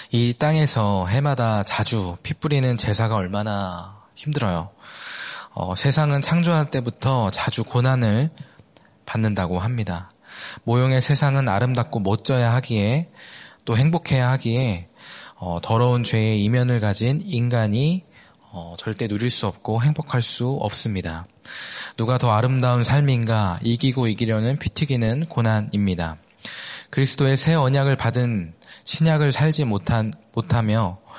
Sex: male